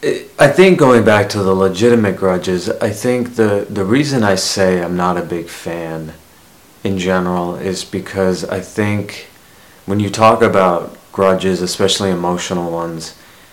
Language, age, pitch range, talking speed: English, 30-49, 90-100 Hz, 150 wpm